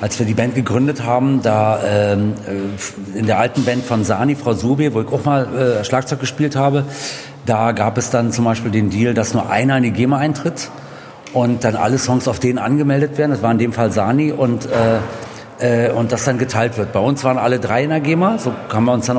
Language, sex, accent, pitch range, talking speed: German, male, German, 115-140 Hz, 230 wpm